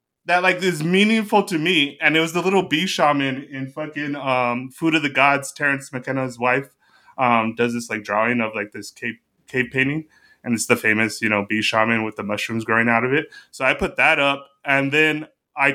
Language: English